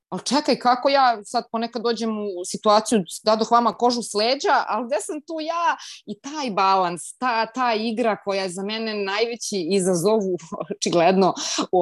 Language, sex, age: Croatian, female, 30-49